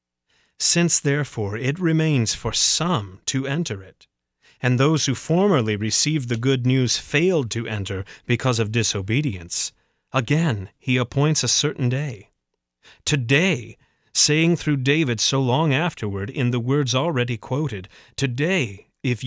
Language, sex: English, male